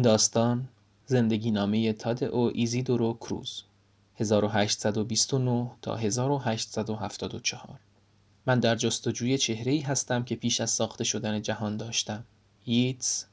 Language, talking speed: Persian, 115 wpm